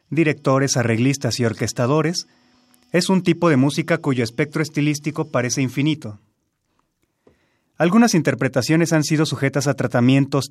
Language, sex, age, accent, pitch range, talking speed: Spanish, male, 30-49, Mexican, 125-155 Hz, 120 wpm